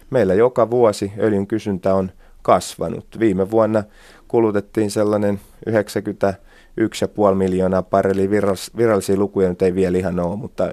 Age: 30-49